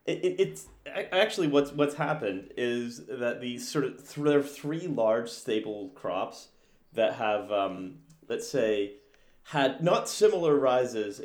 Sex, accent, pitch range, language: male, American, 105-135 Hz, English